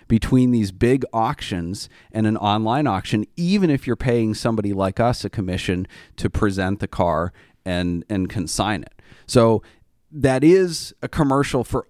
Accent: American